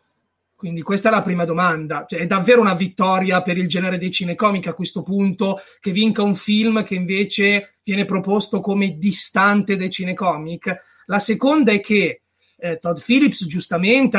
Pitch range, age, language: 180-225 Hz, 30-49, Italian